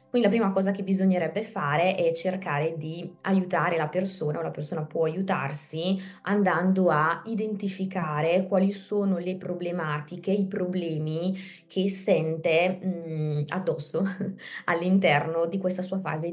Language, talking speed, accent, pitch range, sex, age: Italian, 130 wpm, native, 160-190 Hz, female, 20-39